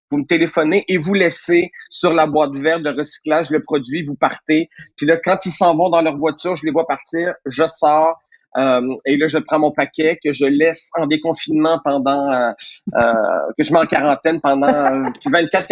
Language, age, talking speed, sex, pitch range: French, 40-59, 200 wpm, male, 150-190 Hz